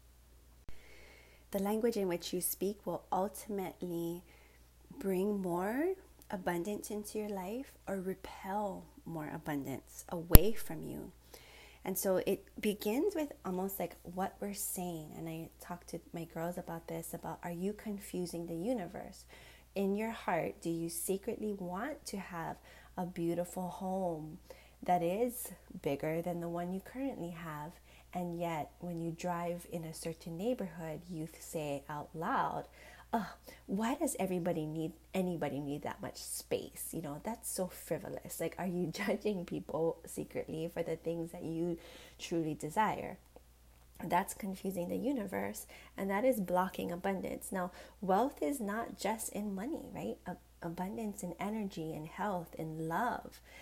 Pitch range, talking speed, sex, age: 165-200 Hz, 150 wpm, female, 20-39